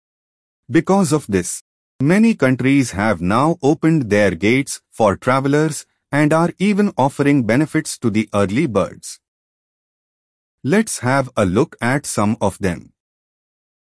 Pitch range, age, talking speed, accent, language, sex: 100-150 Hz, 30-49, 125 wpm, Indian, English, male